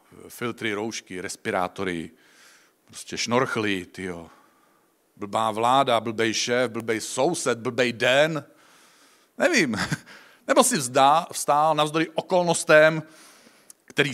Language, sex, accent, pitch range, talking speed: Czech, male, native, 135-180 Hz, 95 wpm